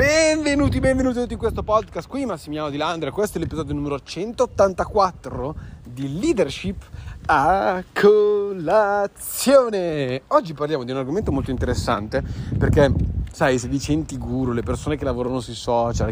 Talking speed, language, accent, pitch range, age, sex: 135 wpm, Italian, native, 120-155 Hz, 30-49, male